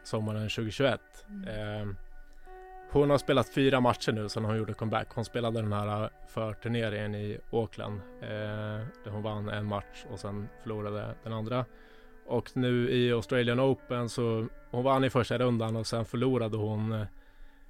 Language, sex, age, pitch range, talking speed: English, male, 20-39, 105-120 Hz, 155 wpm